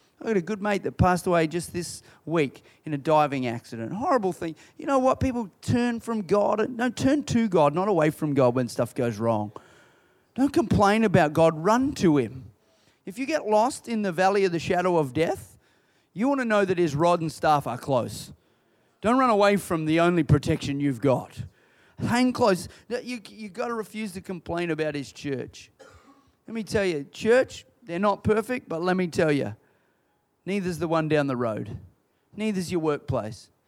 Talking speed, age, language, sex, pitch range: 190 wpm, 30-49, English, male, 140-210 Hz